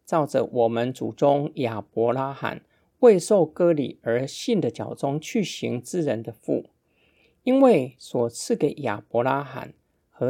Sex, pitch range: male, 120-170 Hz